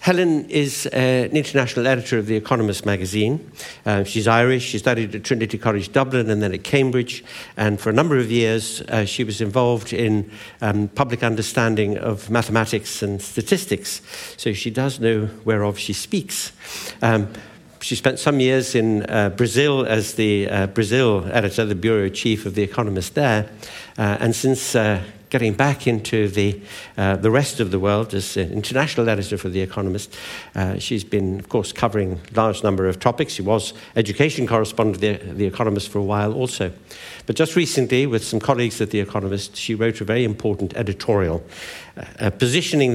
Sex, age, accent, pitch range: male, 60-79, British, 105-125 Hz